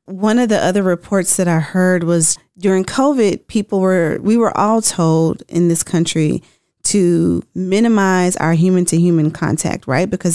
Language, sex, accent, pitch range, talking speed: English, female, American, 180-215 Hz, 170 wpm